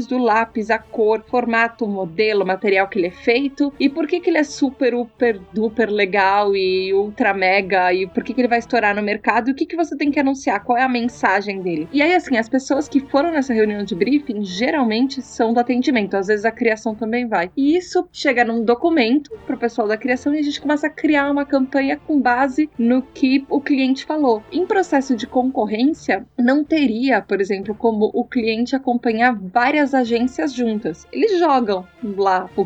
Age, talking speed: 20-39, 205 wpm